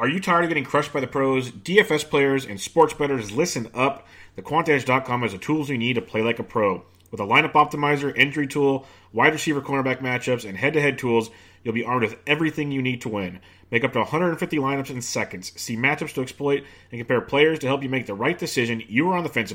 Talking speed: 230 wpm